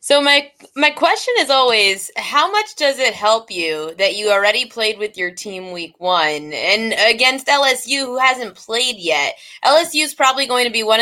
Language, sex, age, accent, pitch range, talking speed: English, female, 20-39, American, 195-300 Hz, 190 wpm